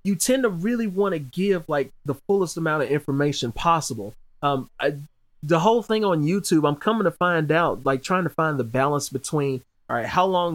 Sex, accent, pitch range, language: male, American, 125-165 Hz, English